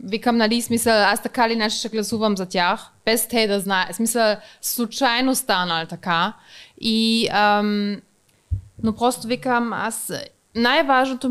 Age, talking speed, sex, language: 20-39, 120 wpm, female, Bulgarian